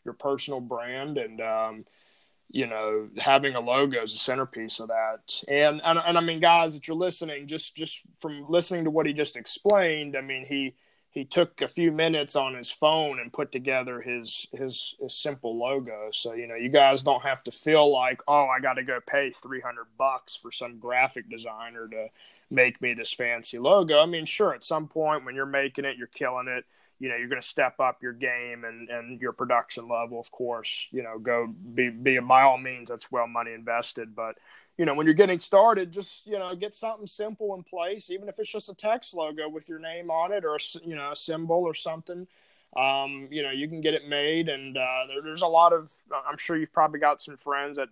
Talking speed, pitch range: 220 wpm, 125-165 Hz